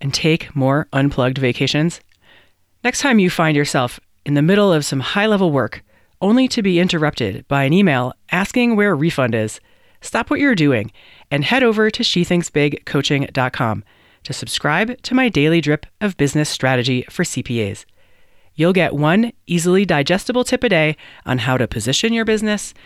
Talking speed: 165 wpm